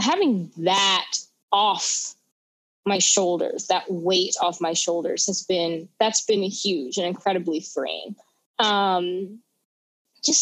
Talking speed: 120 wpm